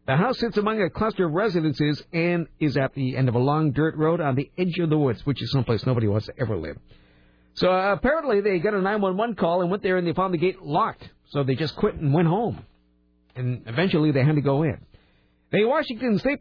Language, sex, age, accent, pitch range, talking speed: English, male, 50-69, American, 155-215 Hz, 240 wpm